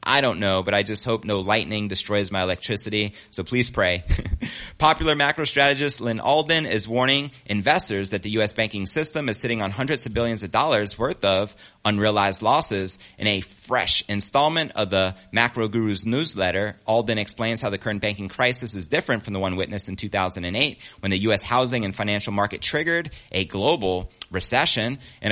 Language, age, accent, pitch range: English, 30-49, American, 100-120 Hz